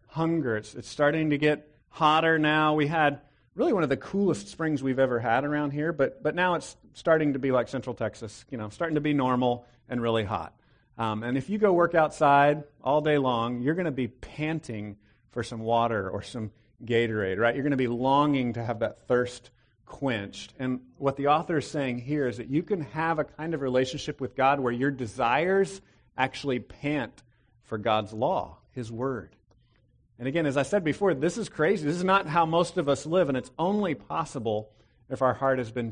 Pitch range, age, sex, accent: 115-150 Hz, 40-59, male, American